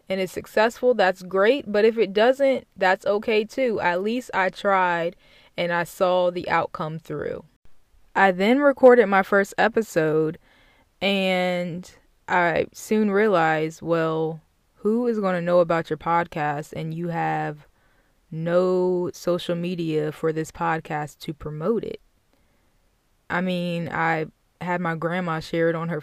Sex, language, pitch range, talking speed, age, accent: female, English, 165-200 Hz, 145 wpm, 20-39, American